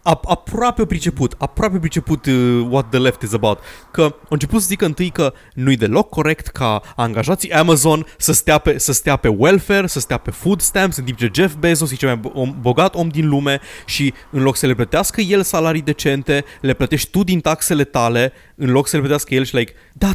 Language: Romanian